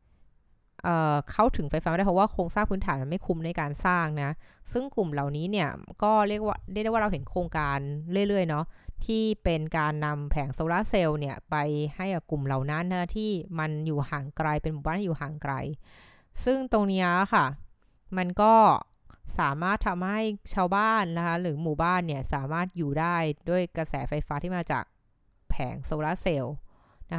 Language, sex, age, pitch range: Thai, female, 20-39, 145-185 Hz